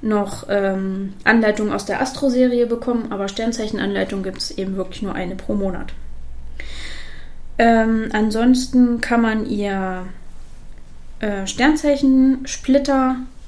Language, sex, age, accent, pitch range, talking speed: German, female, 20-39, German, 195-245 Hz, 105 wpm